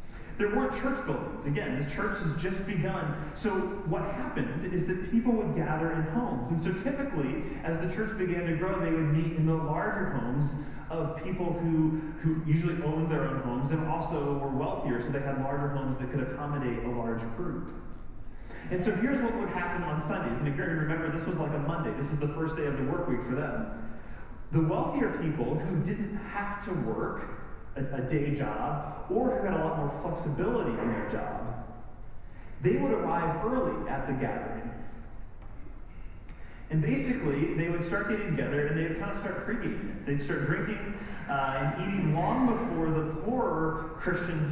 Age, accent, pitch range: 30-49, American, 135-180 Hz